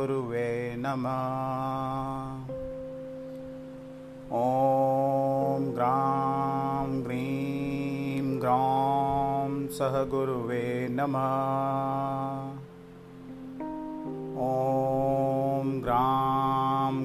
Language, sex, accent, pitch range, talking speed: Hindi, male, native, 130-135 Hz, 35 wpm